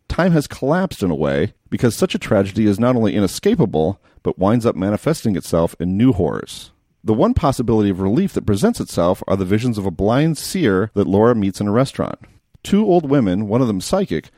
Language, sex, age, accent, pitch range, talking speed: English, male, 40-59, American, 95-135 Hz, 210 wpm